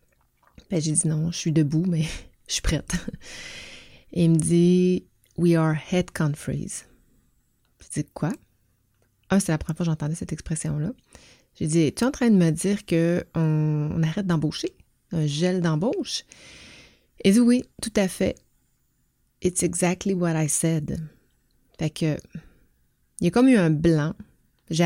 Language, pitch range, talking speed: French, 155-180 Hz, 185 wpm